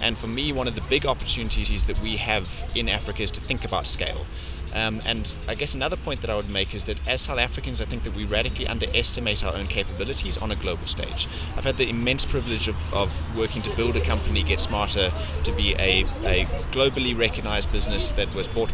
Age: 30-49